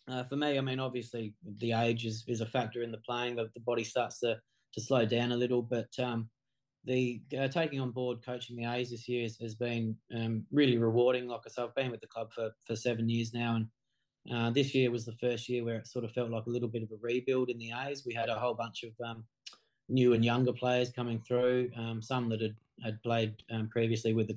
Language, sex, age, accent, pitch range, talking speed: English, male, 20-39, Australian, 115-125 Hz, 250 wpm